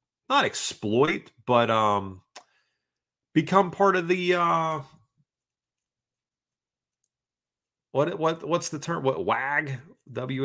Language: English